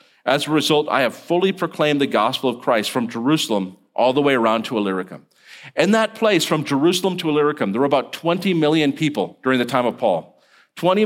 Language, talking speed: English, 205 wpm